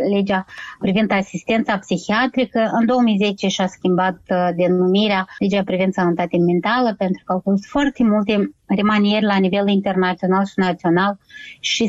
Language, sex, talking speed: Romanian, female, 130 wpm